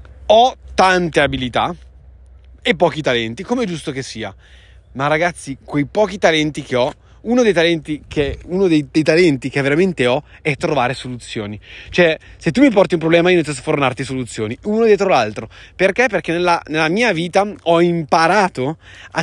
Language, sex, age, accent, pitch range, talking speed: Italian, male, 30-49, native, 125-195 Hz, 175 wpm